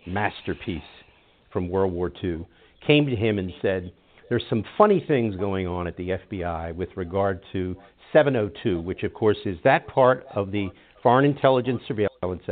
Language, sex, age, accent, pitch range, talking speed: English, male, 50-69, American, 100-150 Hz, 165 wpm